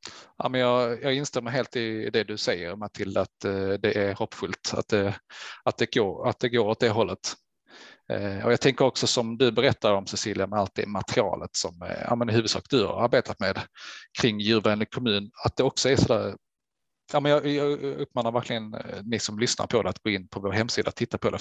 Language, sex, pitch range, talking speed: Swedish, male, 105-125 Hz, 225 wpm